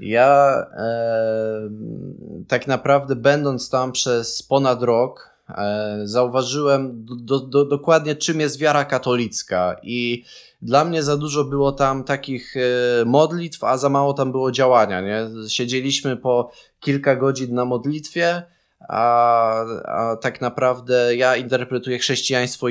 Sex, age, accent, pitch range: male, 20-39, native, 110-130 Hz